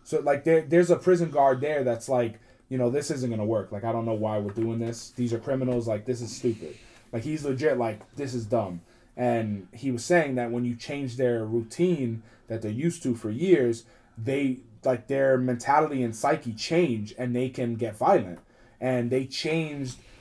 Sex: male